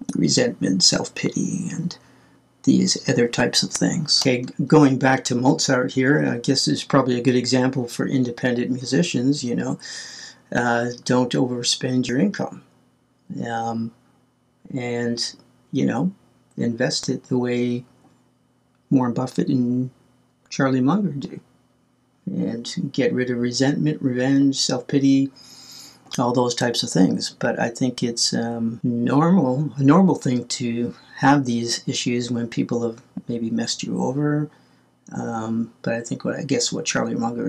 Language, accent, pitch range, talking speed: English, American, 120-140 Hz, 140 wpm